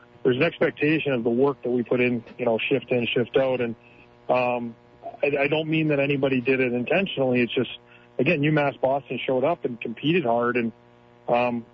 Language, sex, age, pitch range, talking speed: English, male, 40-59, 120-135 Hz, 200 wpm